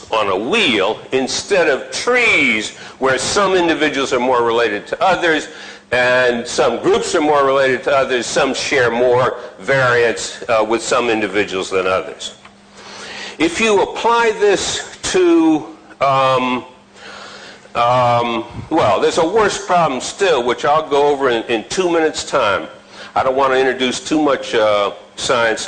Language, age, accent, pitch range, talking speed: Filipino, 60-79, American, 120-170 Hz, 145 wpm